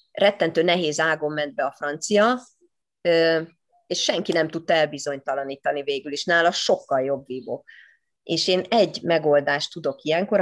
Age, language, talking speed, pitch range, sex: 30-49, Hungarian, 140 wpm, 155-200 Hz, female